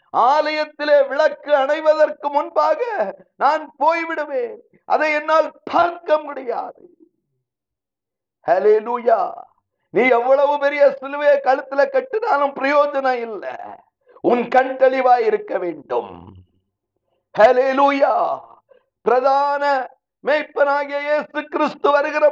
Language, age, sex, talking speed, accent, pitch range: Tamil, 50-69, male, 45 wpm, native, 275-315 Hz